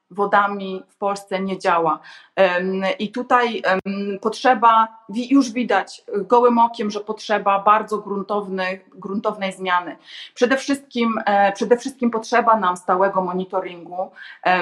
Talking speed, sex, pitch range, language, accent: 105 wpm, female, 190-225 Hz, Polish, native